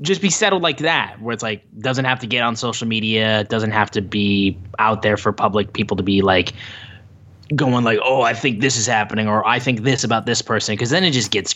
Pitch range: 105-130 Hz